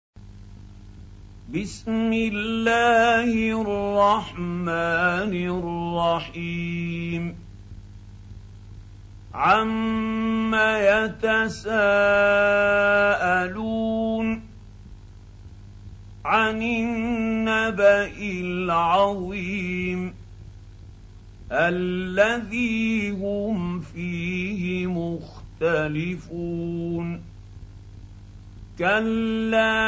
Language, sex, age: Arabic, male, 50-69